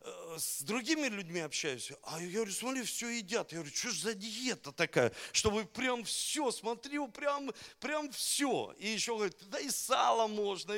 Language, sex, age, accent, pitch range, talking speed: Russian, male, 50-69, native, 165-235 Hz, 175 wpm